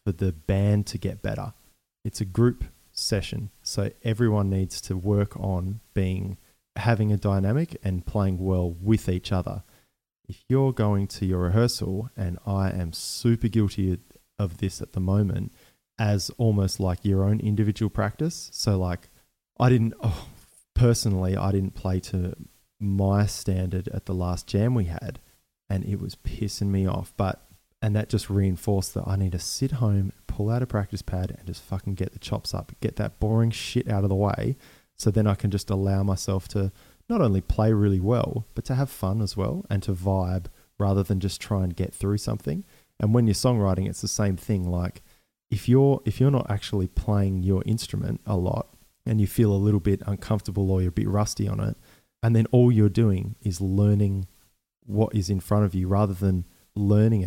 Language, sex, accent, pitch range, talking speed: English, male, Australian, 95-110 Hz, 190 wpm